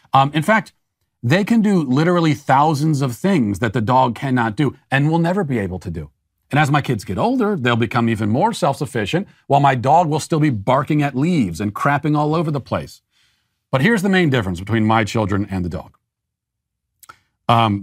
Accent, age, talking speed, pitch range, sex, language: American, 40-59, 200 wpm, 110-150 Hz, male, English